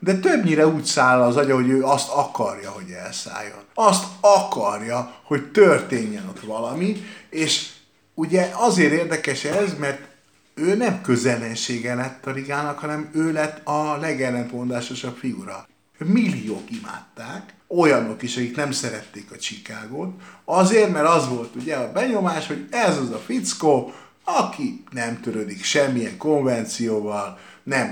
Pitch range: 120-175 Hz